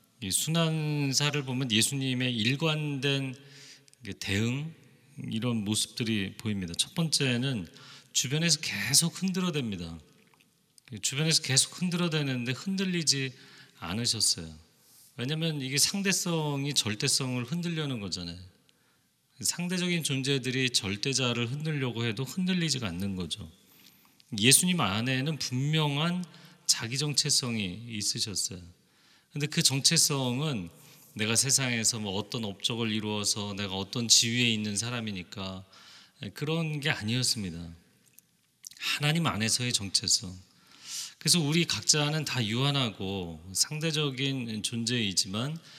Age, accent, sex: 40-59, native, male